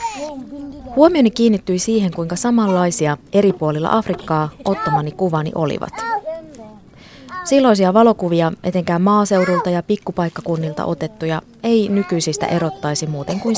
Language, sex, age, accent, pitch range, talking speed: Finnish, female, 20-39, native, 155-215 Hz, 100 wpm